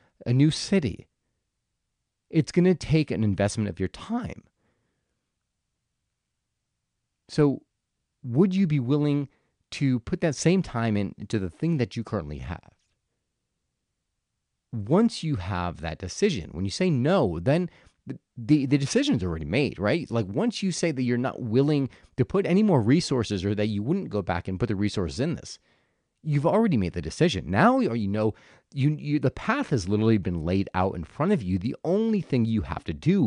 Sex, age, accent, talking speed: male, 30-49, American, 175 wpm